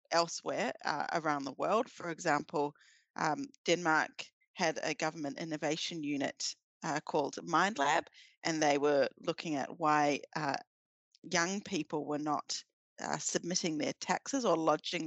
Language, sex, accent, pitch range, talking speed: English, female, Australian, 155-180 Hz, 135 wpm